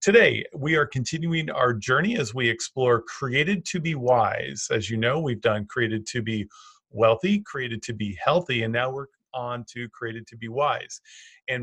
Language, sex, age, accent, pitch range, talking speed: English, male, 40-59, American, 125-165 Hz, 185 wpm